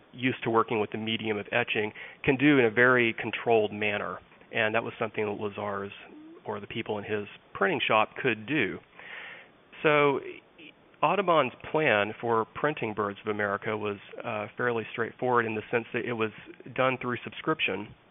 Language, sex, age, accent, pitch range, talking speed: English, male, 40-59, American, 110-125 Hz, 170 wpm